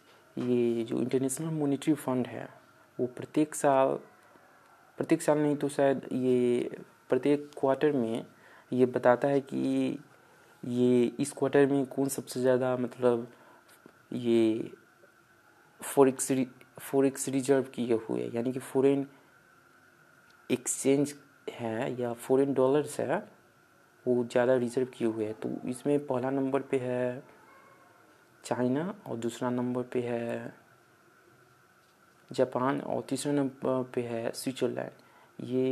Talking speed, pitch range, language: 120 wpm, 125-135 Hz, Hindi